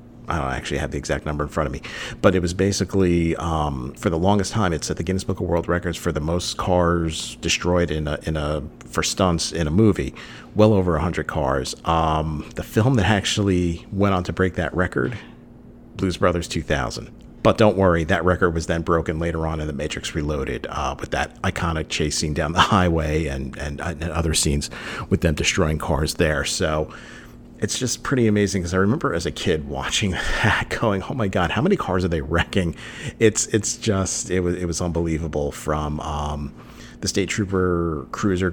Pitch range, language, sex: 80-100 Hz, English, male